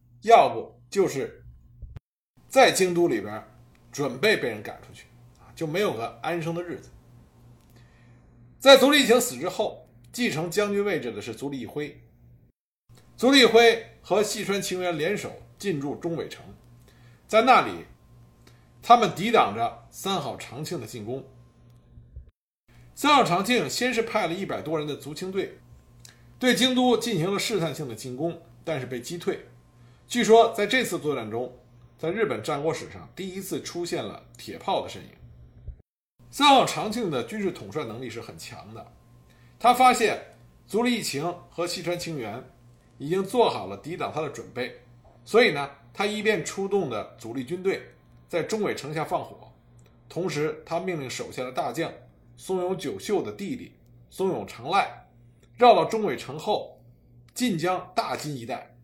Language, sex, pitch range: Chinese, male, 120-195 Hz